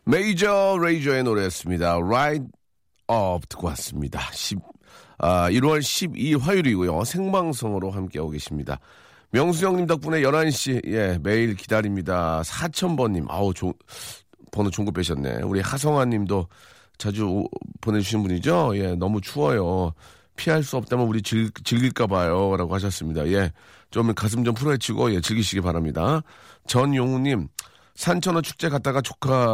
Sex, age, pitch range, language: male, 40-59, 90-125 Hz, Korean